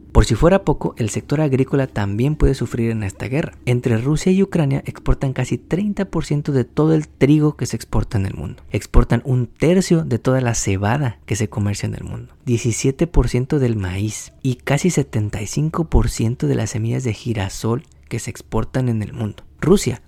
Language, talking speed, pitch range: Spanish, 180 wpm, 105-140 Hz